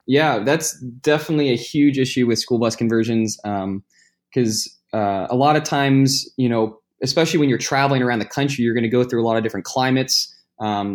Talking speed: 205 wpm